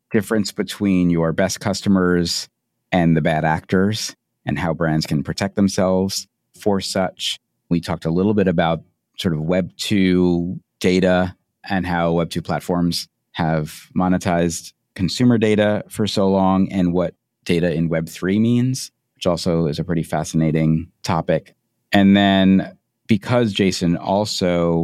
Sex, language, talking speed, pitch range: male, English, 135 wpm, 80-100 Hz